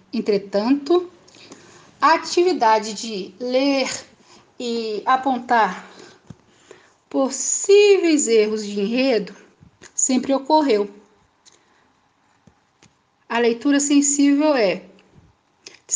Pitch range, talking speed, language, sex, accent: 210-275 Hz, 70 wpm, Portuguese, female, Brazilian